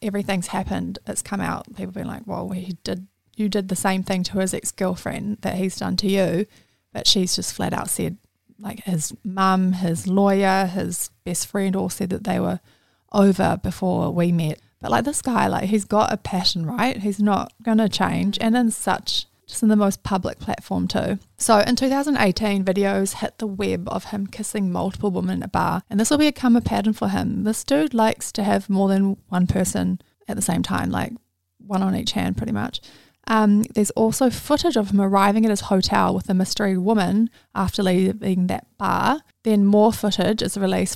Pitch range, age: 190-220 Hz, 20-39